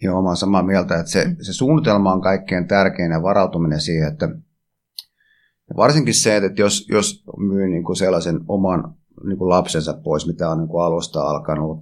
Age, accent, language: 30-49, native, Finnish